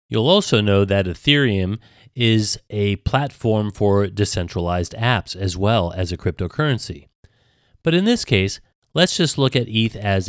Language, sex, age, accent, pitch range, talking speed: English, male, 30-49, American, 95-130 Hz, 150 wpm